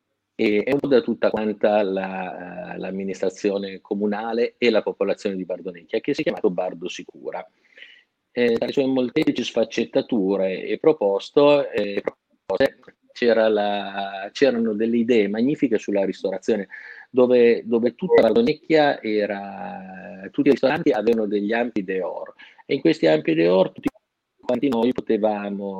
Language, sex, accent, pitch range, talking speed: Italian, male, native, 100-130 Hz, 130 wpm